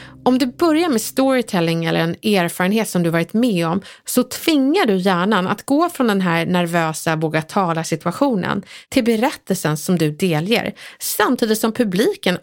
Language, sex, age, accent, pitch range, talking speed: Swedish, female, 30-49, native, 180-260 Hz, 155 wpm